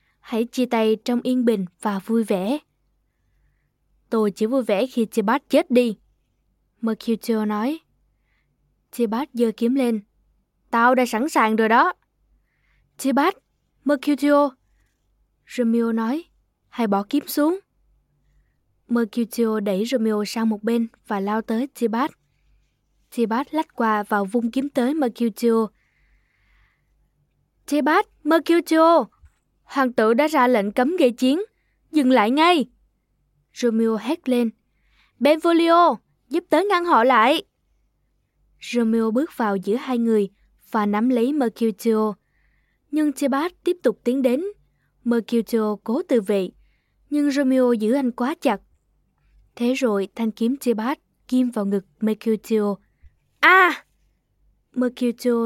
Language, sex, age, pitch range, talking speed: Vietnamese, female, 10-29, 220-275 Hz, 125 wpm